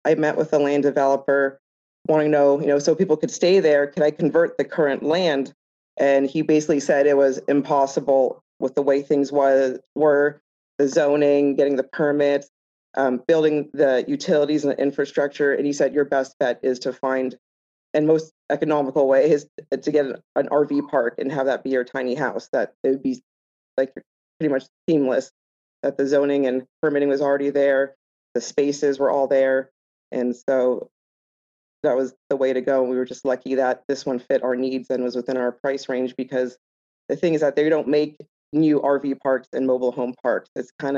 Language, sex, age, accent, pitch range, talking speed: English, female, 30-49, American, 130-145 Hz, 200 wpm